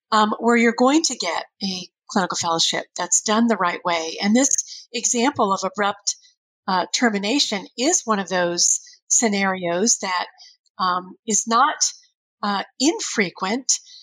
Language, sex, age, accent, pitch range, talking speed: English, female, 40-59, American, 195-260 Hz, 135 wpm